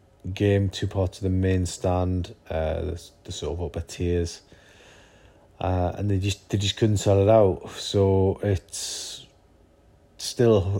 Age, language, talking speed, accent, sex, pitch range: 30-49, English, 140 wpm, British, male, 90-100 Hz